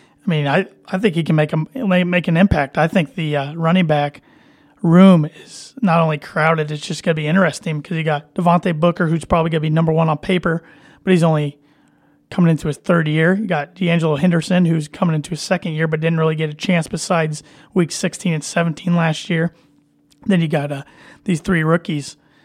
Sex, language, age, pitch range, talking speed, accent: male, English, 30-49, 150-175 Hz, 215 wpm, American